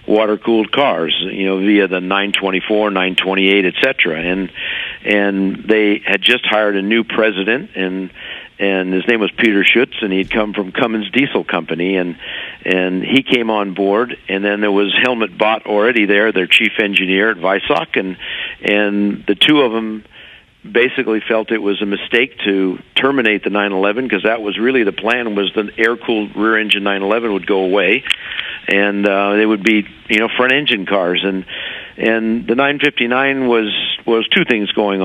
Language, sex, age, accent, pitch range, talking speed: English, male, 50-69, American, 95-115 Hz, 170 wpm